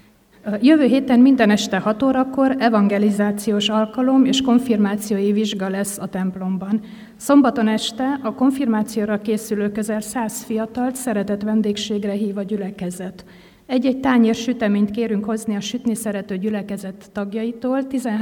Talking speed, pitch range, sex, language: 120 wpm, 205-240 Hz, female, Hungarian